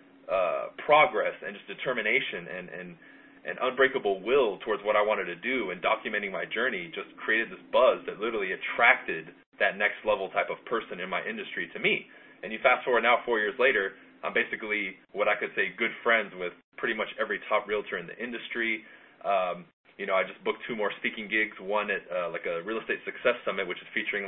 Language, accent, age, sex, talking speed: English, American, 20-39, male, 215 wpm